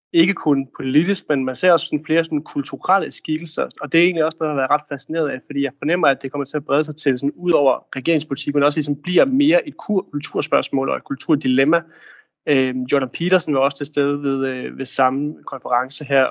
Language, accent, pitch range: Danish, native, 130-155 Hz